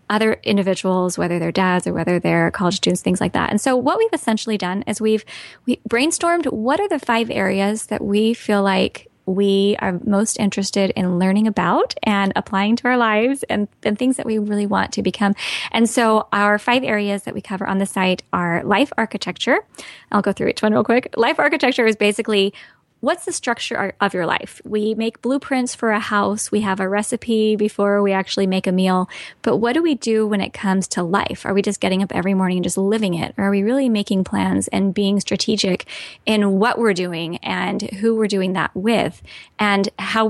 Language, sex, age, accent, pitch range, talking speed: English, female, 10-29, American, 190-225 Hz, 210 wpm